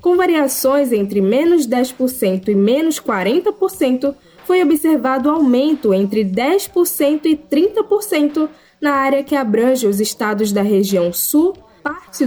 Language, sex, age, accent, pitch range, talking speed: Portuguese, female, 10-29, Brazilian, 215-315 Hz, 120 wpm